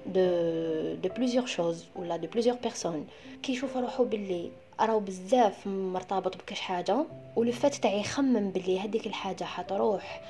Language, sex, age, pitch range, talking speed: Arabic, female, 20-39, 185-245 Hz, 145 wpm